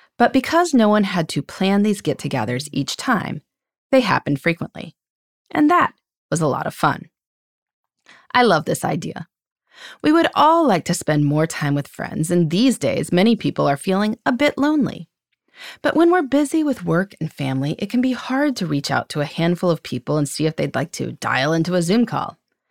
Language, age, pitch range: English, 30-49, 155-245 Hz